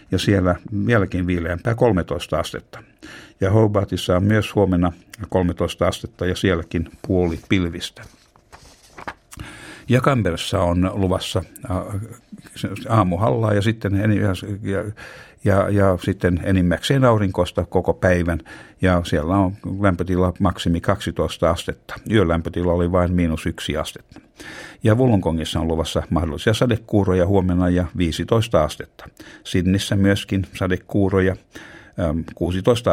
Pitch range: 90-100 Hz